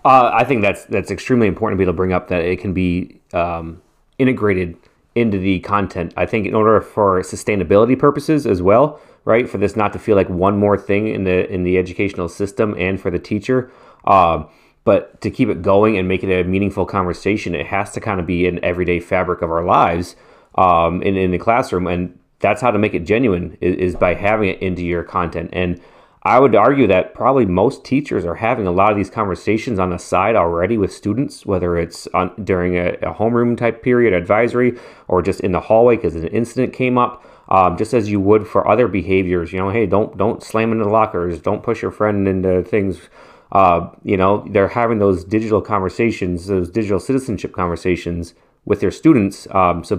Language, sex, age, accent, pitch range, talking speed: English, male, 30-49, American, 90-110 Hz, 210 wpm